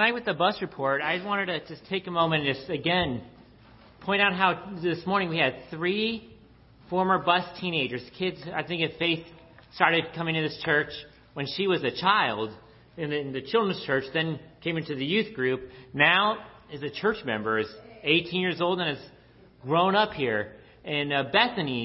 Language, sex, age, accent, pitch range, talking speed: English, male, 40-59, American, 140-190 Hz, 190 wpm